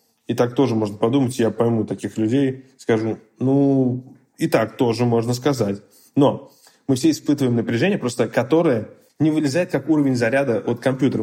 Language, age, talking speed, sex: Russian, 20-39, 160 wpm, male